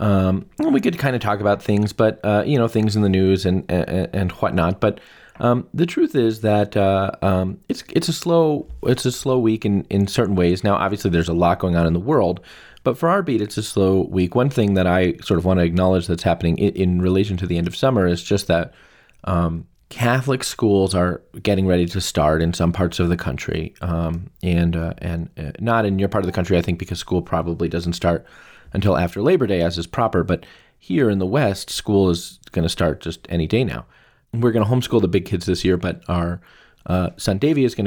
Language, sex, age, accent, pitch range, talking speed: English, male, 30-49, American, 85-110 Hz, 240 wpm